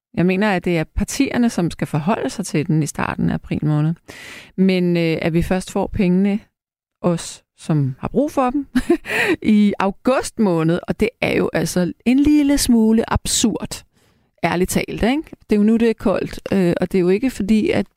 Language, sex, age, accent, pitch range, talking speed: Danish, female, 30-49, native, 160-215 Hz, 200 wpm